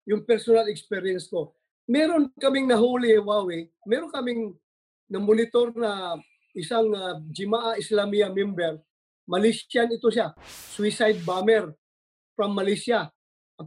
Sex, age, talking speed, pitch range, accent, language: male, 20-39, 110 wpm, 195-235 Hz, Filipino, English